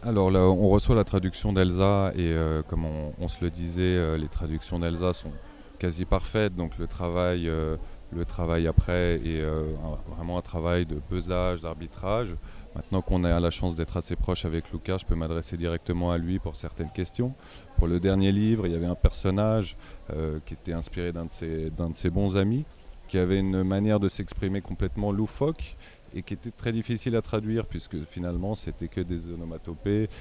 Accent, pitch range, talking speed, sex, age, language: French, 85-100 Hz, 185 wpm, male, 30-49, French